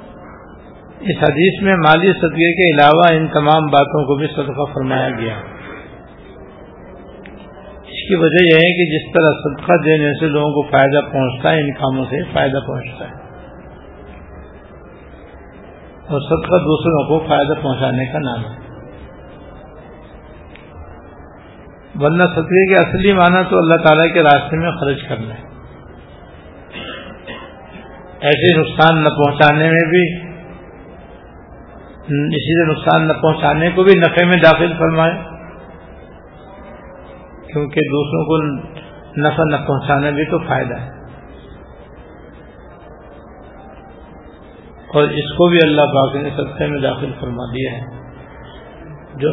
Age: 50-69